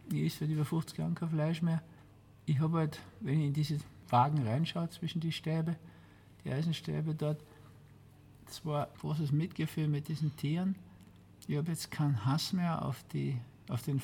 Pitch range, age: 120-150 Hz, 50-69